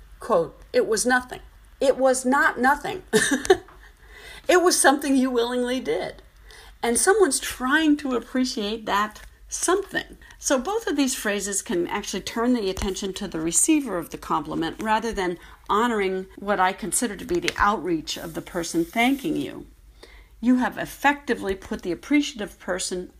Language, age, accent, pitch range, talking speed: English, 50-69, American, 205-295 Hz, 155 wpm